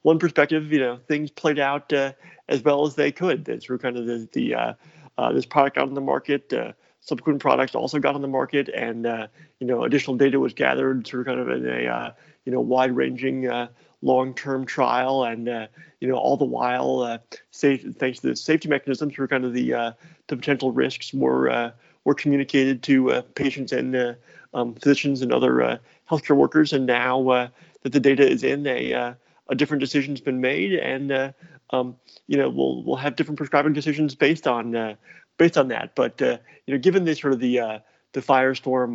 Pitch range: 120-145 Hz